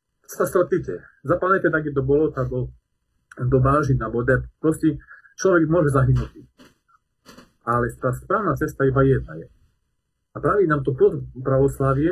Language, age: Slovak, 40-59